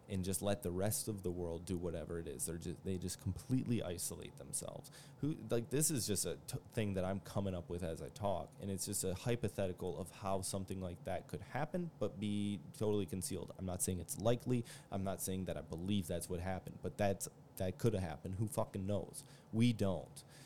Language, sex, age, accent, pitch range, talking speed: English, male, 20-39, American, 90-115 Hz, 225 wpm